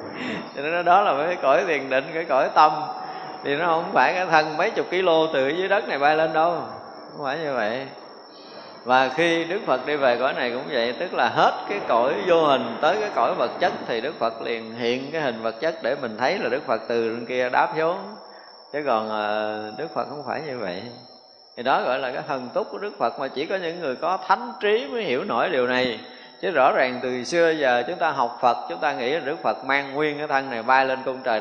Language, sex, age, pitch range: Vietnamese, male, 20-39, 120-160 Hz